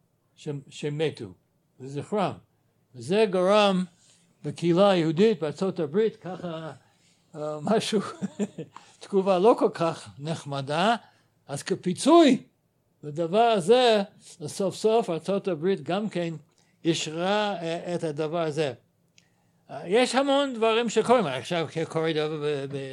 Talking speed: 100 wpm